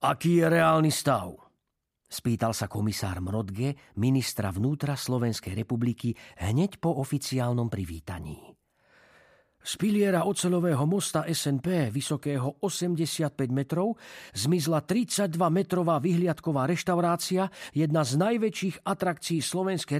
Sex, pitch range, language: male, 125-180 Hz, Slovak